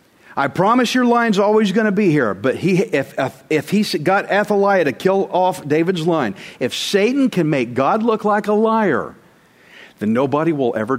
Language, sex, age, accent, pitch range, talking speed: English, male, 50-69, American, 155-210 Hz, 190 wpm